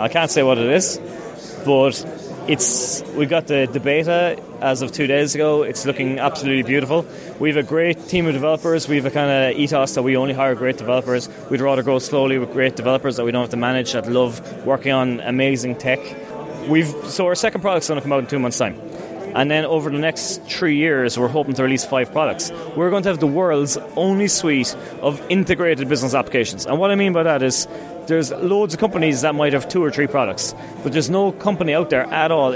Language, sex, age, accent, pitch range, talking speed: English, male, 20-39, Irish, 125-155 Hz, 230 wpm